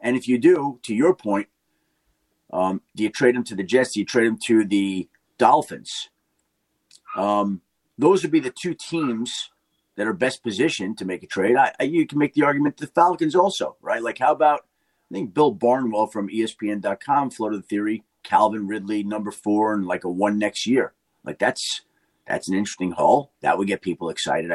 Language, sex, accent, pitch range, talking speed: English, male, American, 105-150 Hz, 195 wpm